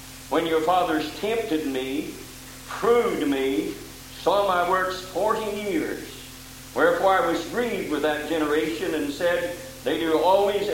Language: English